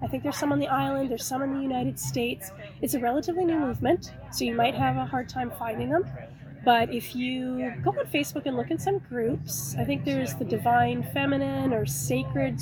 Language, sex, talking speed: English, female, 220 wpm